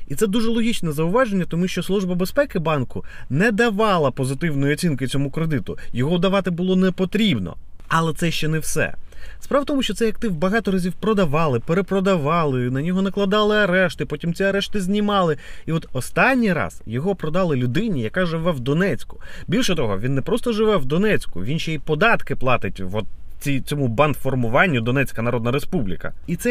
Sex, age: male, 30-49